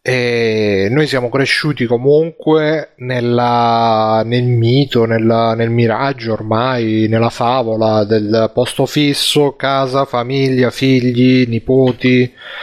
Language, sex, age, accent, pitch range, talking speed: Italian, male, 30-49, native, 110-130 Hz, 100 wpm